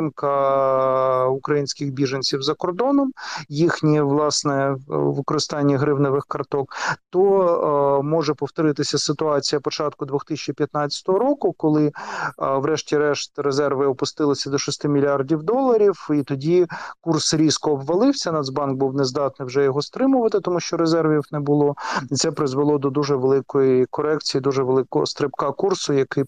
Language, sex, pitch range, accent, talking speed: Ukrainian, male, 140-160 Hz, native, 125 wpm